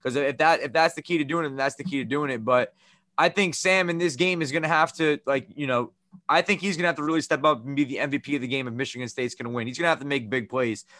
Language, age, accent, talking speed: English, 20-39, American, 345 wpm